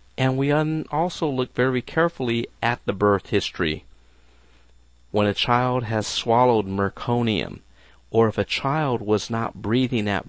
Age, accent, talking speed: 50-69, American, 140 wpm